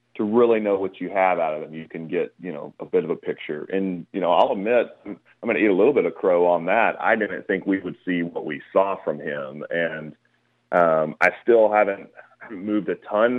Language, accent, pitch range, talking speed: English, American, 85-105 Hz, 240 wpm